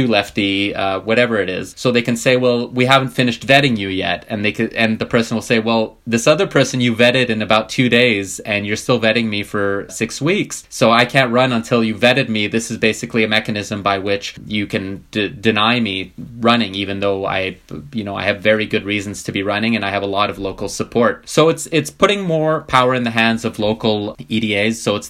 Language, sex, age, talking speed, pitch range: English, male, 20-39, 235 wpm, 100-115 Hz